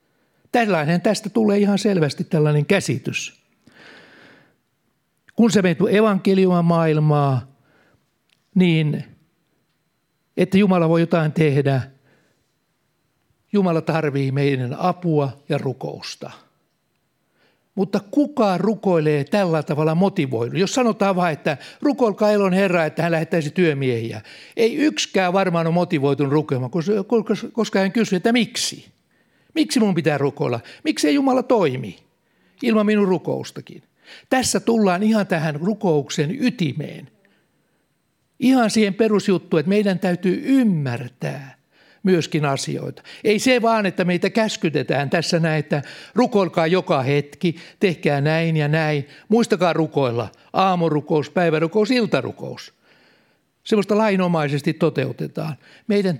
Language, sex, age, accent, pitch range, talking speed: Finnish, male, 60-79, native, 155-210 Hz, 110 wpm